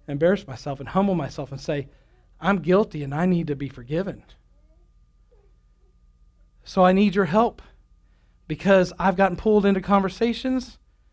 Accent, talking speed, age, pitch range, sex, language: American, 140 wpm, 40-59, 115-185 Hz, male, English